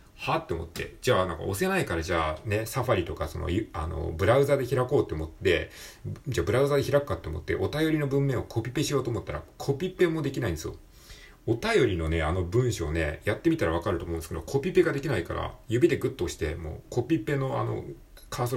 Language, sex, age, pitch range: Japanese, male, 40-59, 85-130 Hz